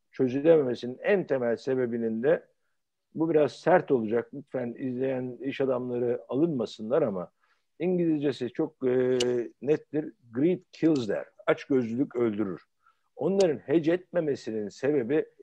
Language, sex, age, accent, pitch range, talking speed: Turkish, male, 60-79, native, 125-180 Hz, 110 wpm